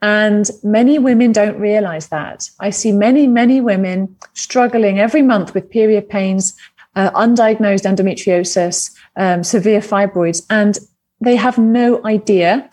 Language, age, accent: English, 30-49, British